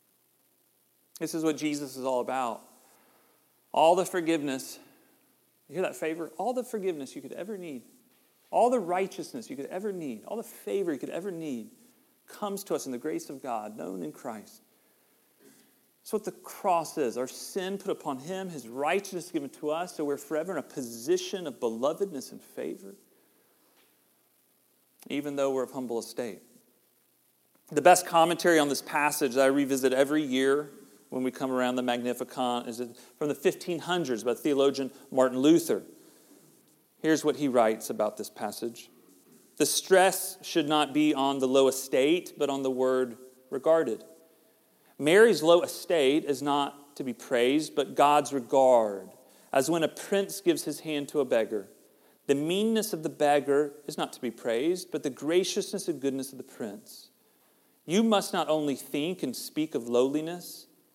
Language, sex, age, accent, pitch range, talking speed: English, male, 40-59, American, 135-185 Hz, 170 wpm